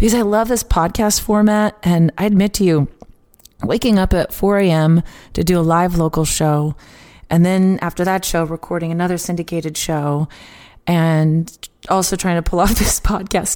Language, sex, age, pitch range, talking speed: English, female, 30-49, 160-210 Hz, 175 wpm